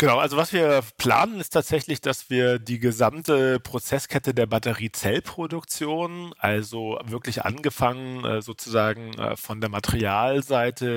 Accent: German